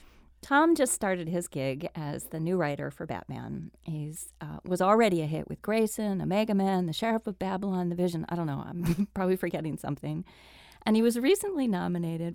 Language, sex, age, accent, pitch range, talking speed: English, female, 40-59, American, 155-210 Hz, 190 wpm